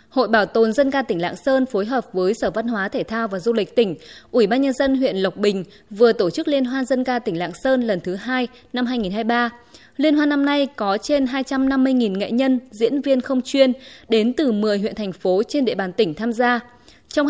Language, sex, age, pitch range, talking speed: Vietnamese, female, 20-39, 210-270 Hz, 235 wpm